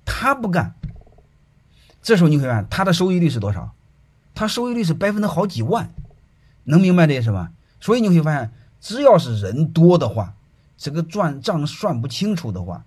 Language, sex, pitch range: Chinese, male, 110-170 Hz